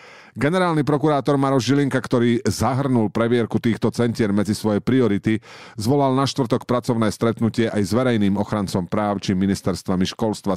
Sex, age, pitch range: male, 50-69, 95-125 Hz